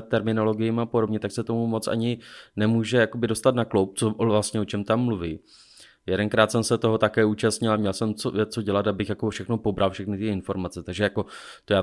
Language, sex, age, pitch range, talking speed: Czech, male, 20-39, 95-110 Hz, 205 wpm